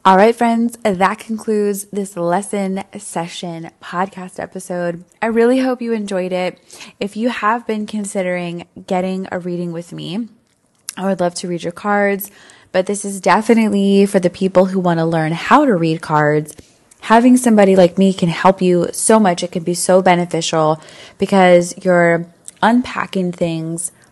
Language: English